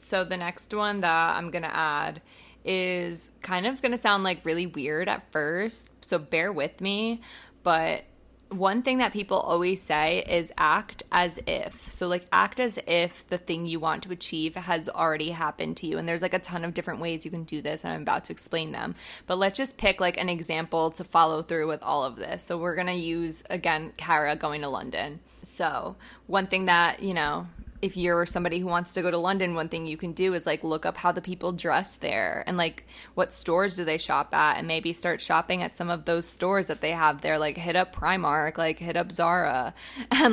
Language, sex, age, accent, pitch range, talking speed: English, female, 20-39, American, 165-185 Hz, 225 wpm